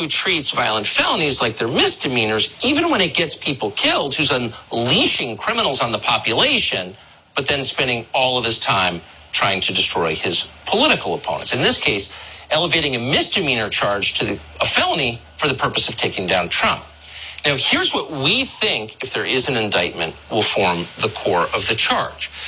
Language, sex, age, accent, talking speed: English, male, 50-69, American, 180 wpm